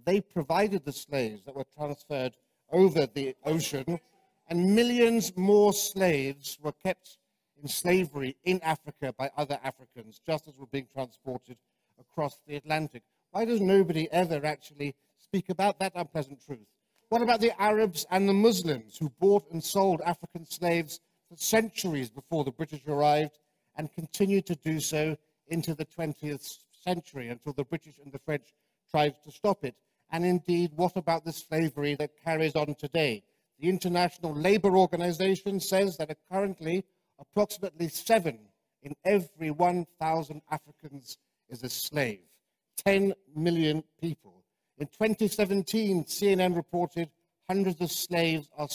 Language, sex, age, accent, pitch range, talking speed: English, male, 60-79, British, 145-185 Hz, 145 wpm